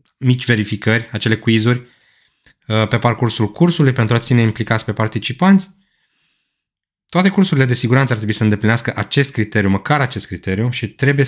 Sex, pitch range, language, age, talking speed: male, 110-135 Hz, Romanian, 20-39, 150 wpm